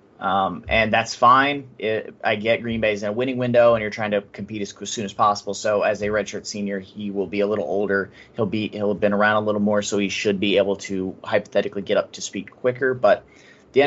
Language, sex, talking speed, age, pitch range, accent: English, male, 245 wpm, 30-49, 100-120 Hz, American